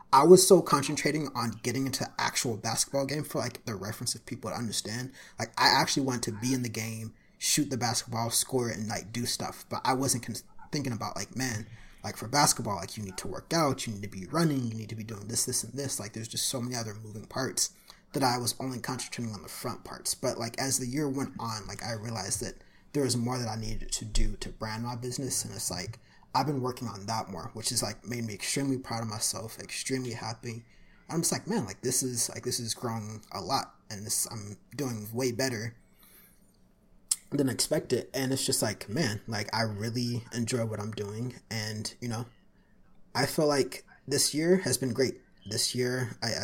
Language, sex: English, male